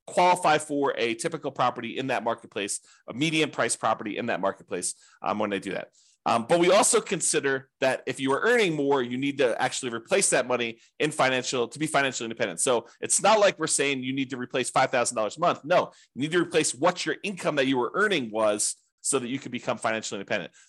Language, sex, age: English, male, 40-59